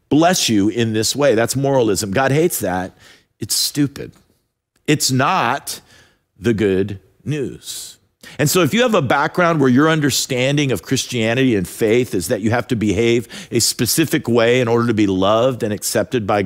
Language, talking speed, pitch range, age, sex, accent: English, 175 wpm, 115-155 Hz, 50-69, male, American